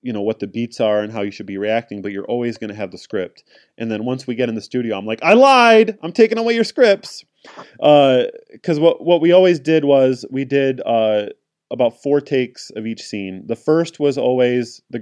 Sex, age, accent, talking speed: male, 30-49, American, 235 wpm